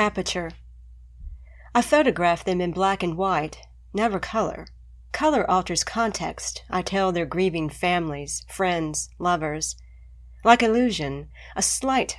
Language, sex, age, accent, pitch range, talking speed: English, female, 40-59, American, 150-190 Hz, 120 wpm